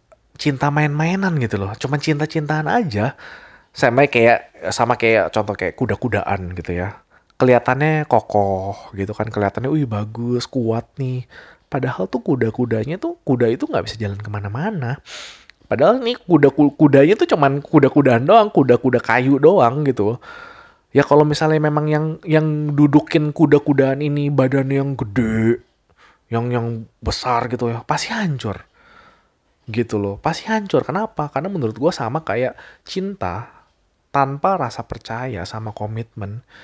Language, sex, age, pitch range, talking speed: Indonesian, male, 20-39, 110-150 Hz, 135 wpm